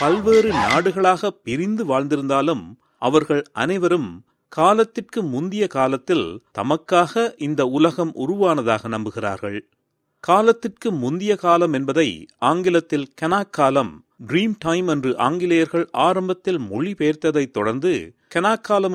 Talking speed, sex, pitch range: 90 wpm, male, 135-195 Hz